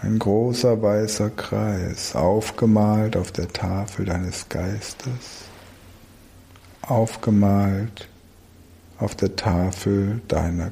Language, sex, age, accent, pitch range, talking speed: German, male, 60-79, German, 90-110 Hz, 85 wpm